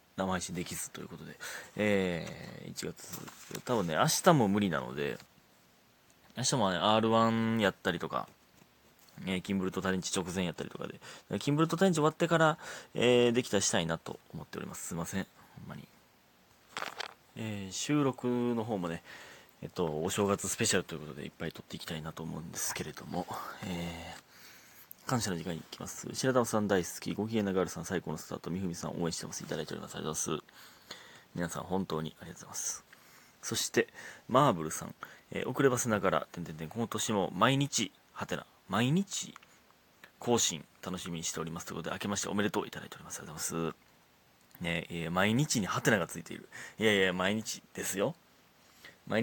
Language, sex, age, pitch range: Japanese, male, 30-49, 85-120 Hz